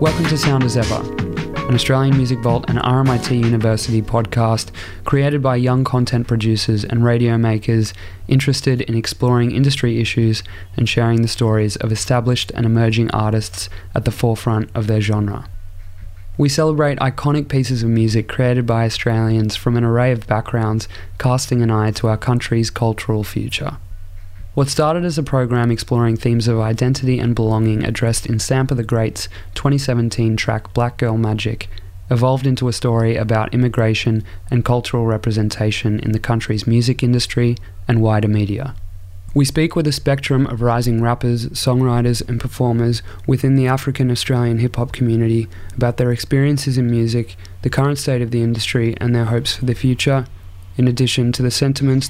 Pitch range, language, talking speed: 110-125 Hz, English, 160 wpm